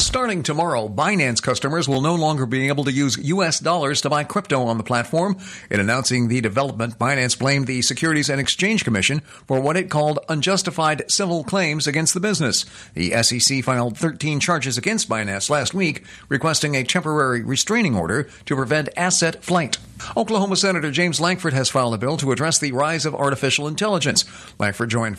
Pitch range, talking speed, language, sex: 125-160 Hz, 180 wpm, English, male